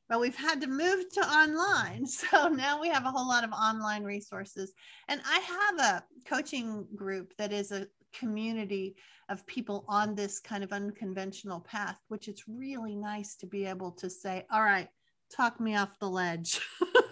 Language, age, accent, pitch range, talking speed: English, 40-59, American, 190-245 Hz, 180 wpm